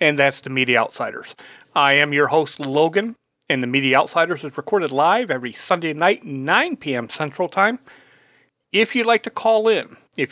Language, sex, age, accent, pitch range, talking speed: English, male, 40-59, American, 140-195 Hz, 180 wpm